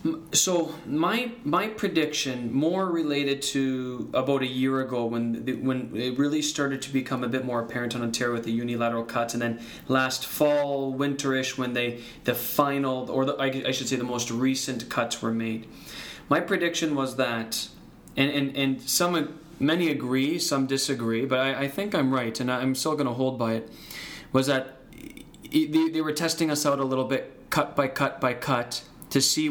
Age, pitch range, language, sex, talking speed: 20-39, 120-140 Hz, English, male, 190 wpm